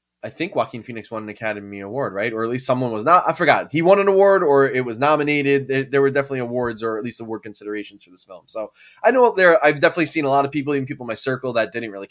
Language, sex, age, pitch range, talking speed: English, male, 20-39, 110-145 Hz, 285 wpm